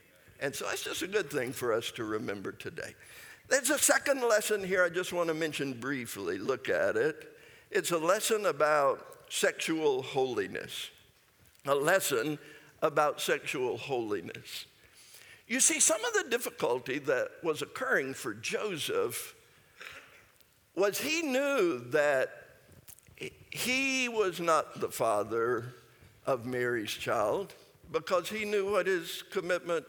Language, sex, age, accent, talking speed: English, male, 60-79, American, 135 wpm